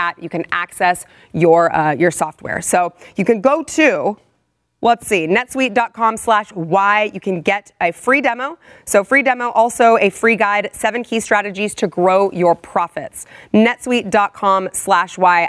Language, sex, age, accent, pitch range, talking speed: English, female, 30-49, American, 165-205 Hz, 155 wpm